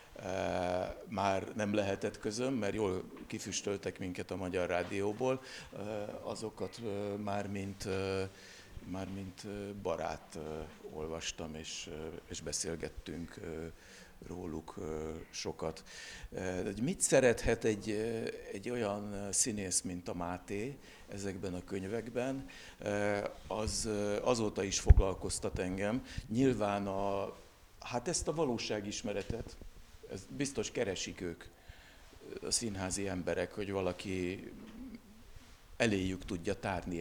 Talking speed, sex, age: 115 wpm, male, 60-79